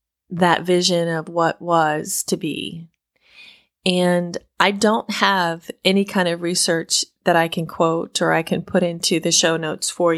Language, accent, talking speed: English, American, 165 wpm